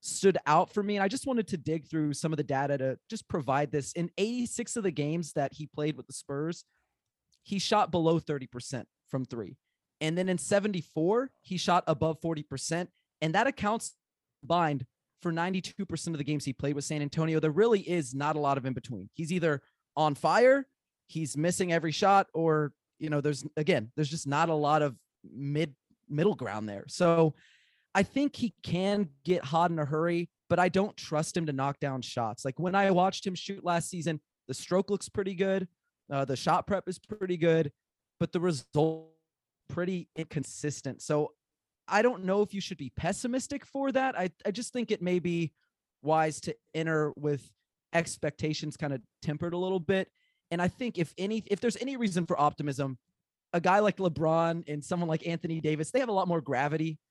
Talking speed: 200 wpm